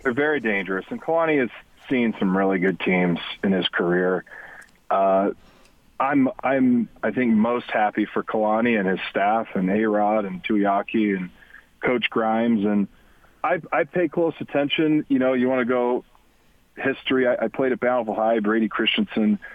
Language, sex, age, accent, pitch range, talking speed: English, male, 40-59, American, 105-140 Hz, 165 wpm